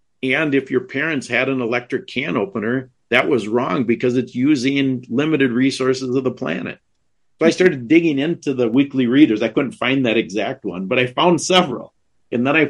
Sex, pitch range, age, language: male, 115-135 Hz, 50-69, English